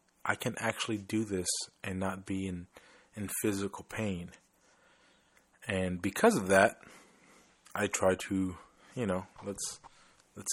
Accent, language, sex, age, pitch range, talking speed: American, English, male, 30-49, 95-105 Hz, 130 wpm